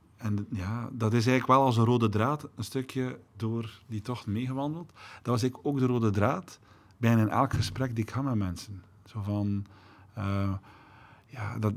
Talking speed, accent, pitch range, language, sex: 190 wpm, Dutch, 100-120 Hz, Dutch, male